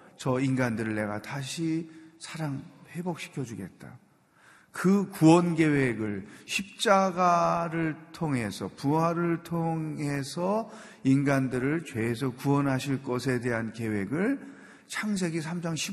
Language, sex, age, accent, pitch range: Korean, male, 40-59, native, 120-175 Hz